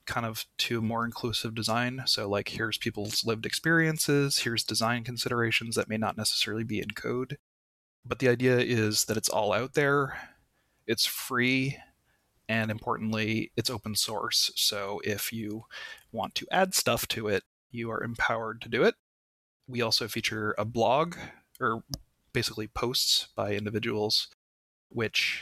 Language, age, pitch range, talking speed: English, 20-39, 105-125 Hz, 150 wpm